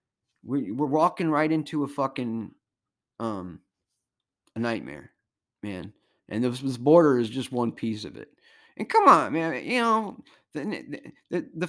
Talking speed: 135 wpm